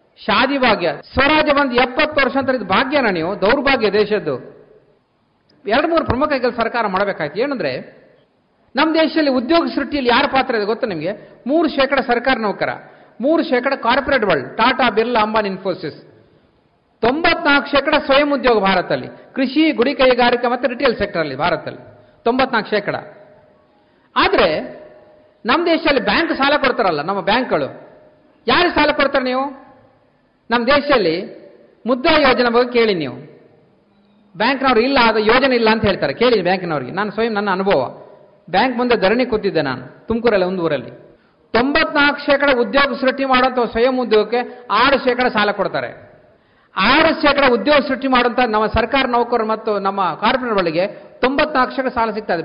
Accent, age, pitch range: native, 50-69, 210-280 Hz